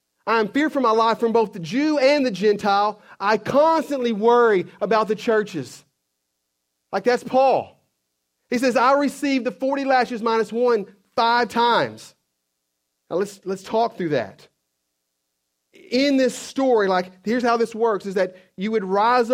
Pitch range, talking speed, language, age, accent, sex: 140-235 Hz, 160 wpm, English, 40-59, American, male